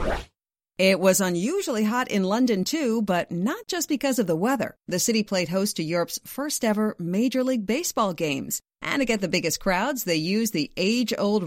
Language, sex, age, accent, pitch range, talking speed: English, female, 40-59, American, 170-250 Hz, 185 wpm